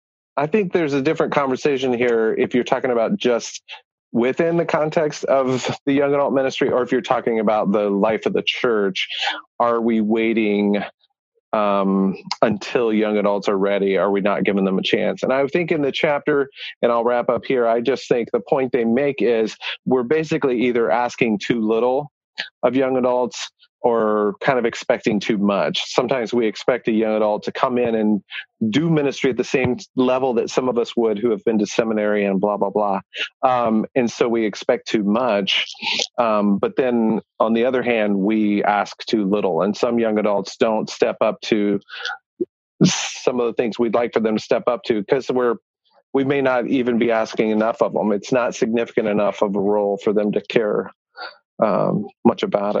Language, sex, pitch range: English, male, 105-130 Hz